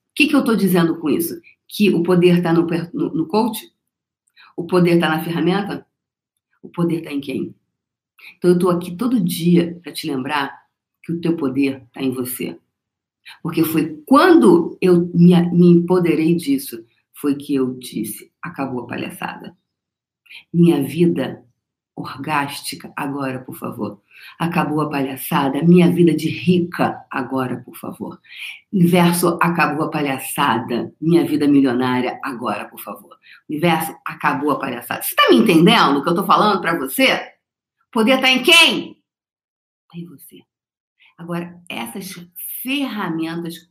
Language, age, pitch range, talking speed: Portuguese, 50-69, 145-220 Hz, 150 wpm